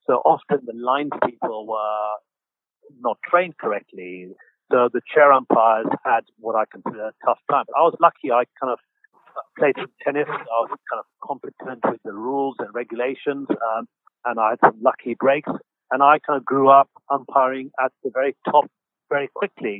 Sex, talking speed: male, 180 wpm